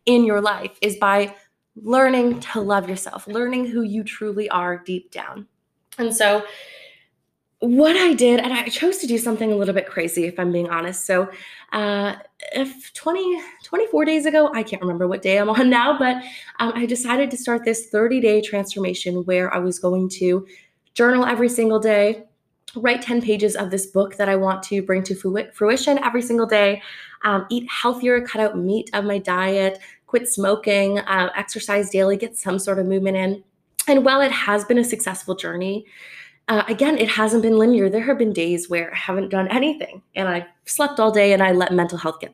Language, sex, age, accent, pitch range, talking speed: English, female, 20-39, American, 190-240 Hz, 195 wpm